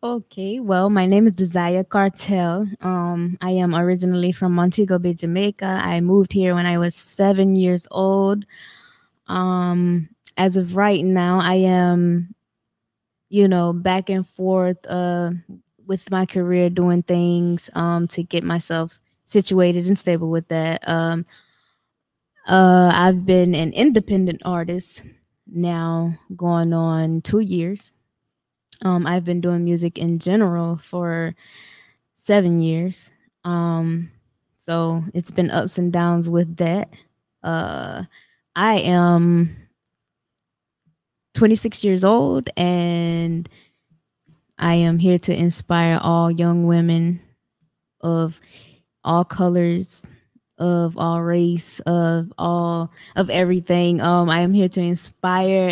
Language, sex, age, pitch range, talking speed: English, female, 20-39, 170-185 Hz, 120 wpm